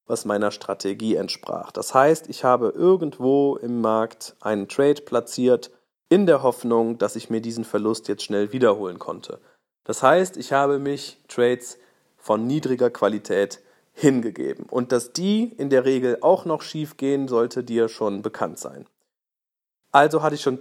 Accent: German